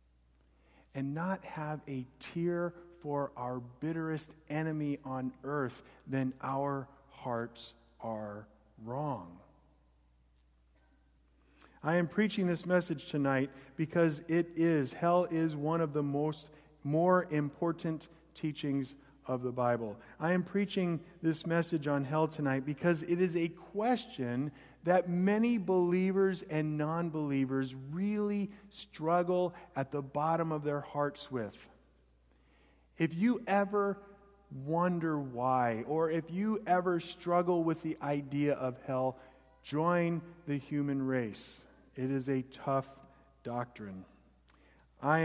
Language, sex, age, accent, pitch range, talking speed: English, male, 40-59, American, 130-170 Hz, 120 wpm